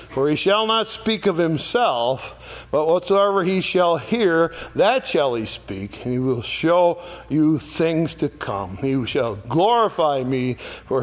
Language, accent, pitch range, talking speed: English, American, 115-155 Hz, 160 wpm